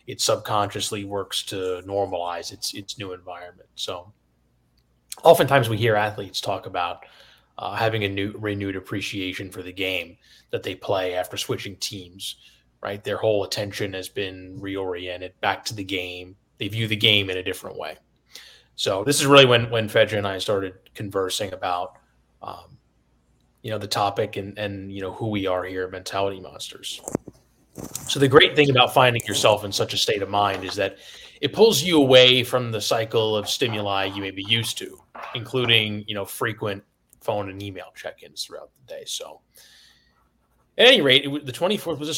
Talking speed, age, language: 180 wpm, 20-39, English